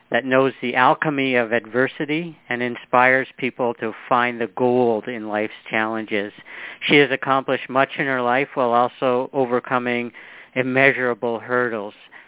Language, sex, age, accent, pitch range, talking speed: English, male, 50-69, American, 115-135 Hz, 135 wpm